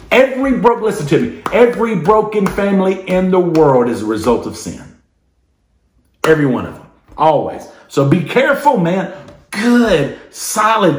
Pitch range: 140-205 Hz